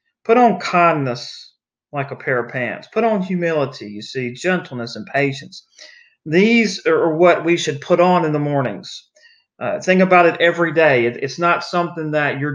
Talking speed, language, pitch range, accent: 175 wpm, English, 140-185 Hz, American